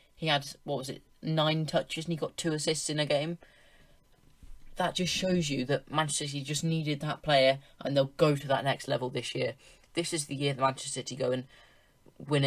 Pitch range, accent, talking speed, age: 130-145 Hz, British, 215 wpm, 20-39